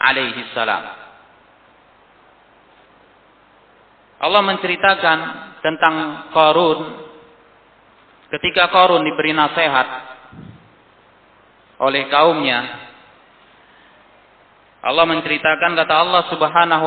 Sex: male